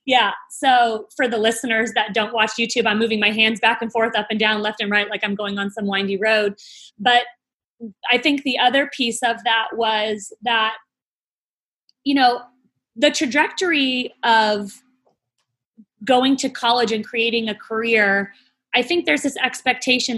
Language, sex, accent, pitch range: English, female, American, 215-250 Hz